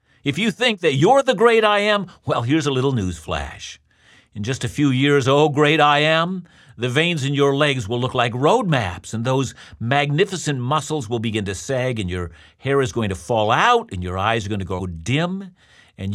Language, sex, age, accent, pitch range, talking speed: English, male, 50-69, American, 105-150 Hz, 215 wpm